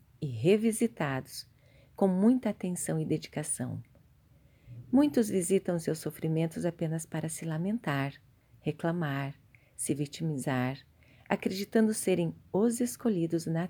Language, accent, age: Portuguese, Brazilian, 40-59